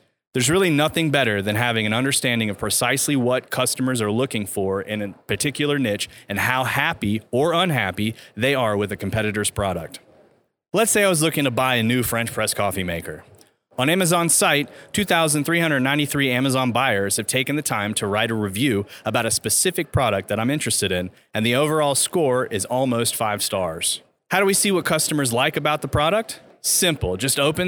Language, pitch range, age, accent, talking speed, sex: English, 110-150 Hz, 30-49, American, 185 wpm, male